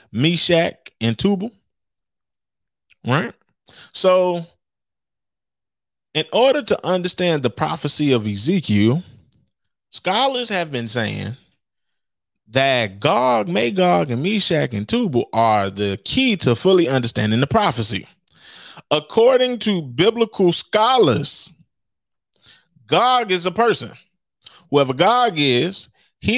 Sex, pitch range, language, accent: male, 125-190 Hz, English, American